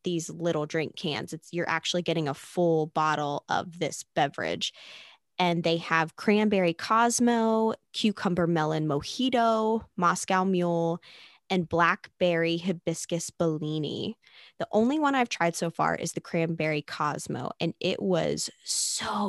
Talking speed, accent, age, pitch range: 135 wpm, American, 20-39, 165-215 Hz